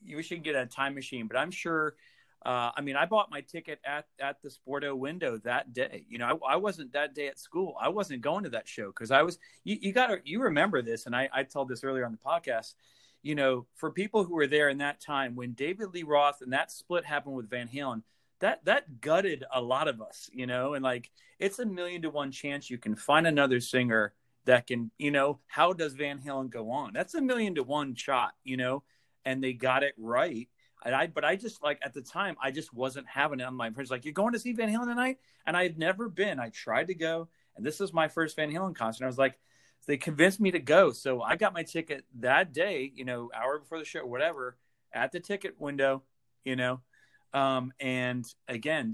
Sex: male